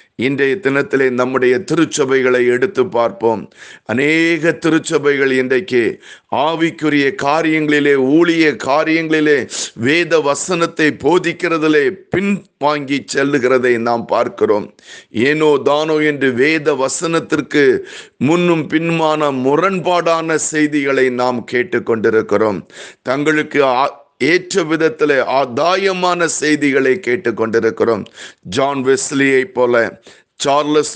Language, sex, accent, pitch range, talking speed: Tamil, male, native, 130-165 Hz, 85 wpm